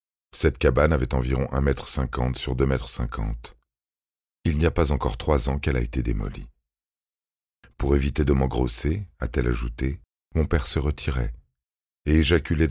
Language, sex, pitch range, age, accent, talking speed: French, male, 65-80 Hz, 40-59, French, 160 wpm